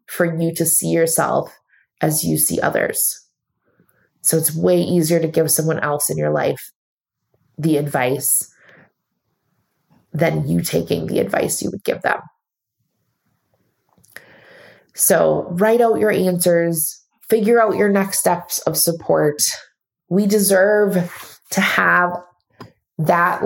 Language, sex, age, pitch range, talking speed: English, female, 20-39, 155-180 Hz, 125 wpm